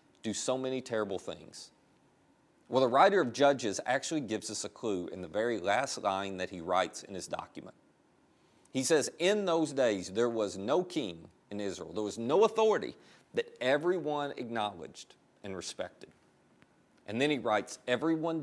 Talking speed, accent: 165 wpm, American